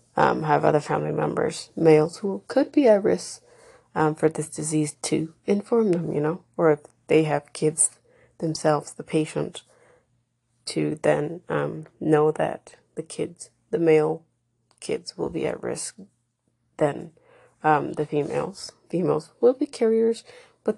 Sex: female